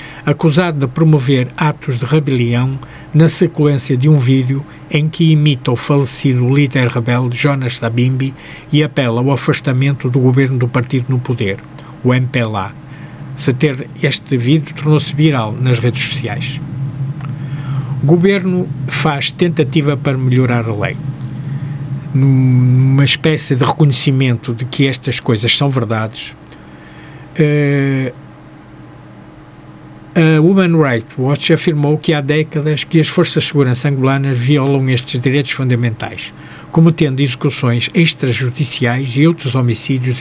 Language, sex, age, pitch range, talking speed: Portuguese, male, 50-69, 125-150 Hz, 125 wpm